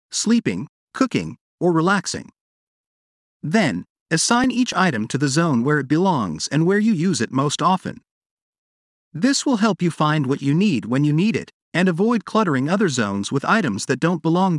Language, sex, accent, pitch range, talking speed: English, male, American, 140-210 Hz, 175 wpm